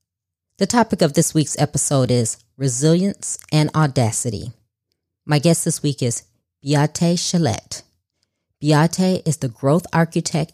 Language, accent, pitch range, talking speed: English, American, 120-165 Hz, 125 wpm